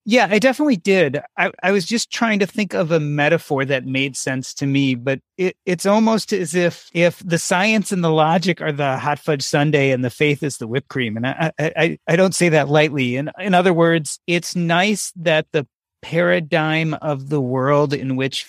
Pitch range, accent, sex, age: 140-175 Hz, American, male, 30-49